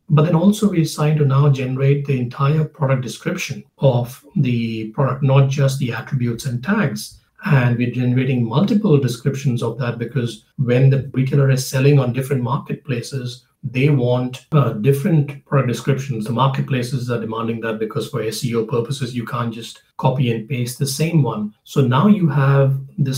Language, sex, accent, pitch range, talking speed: English, male, Indian, 120-145 Hz, 170 wpm